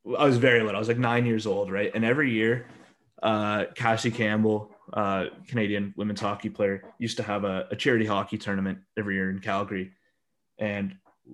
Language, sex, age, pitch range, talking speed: English, male, 20-39, 100-120 Hz, 185 wpm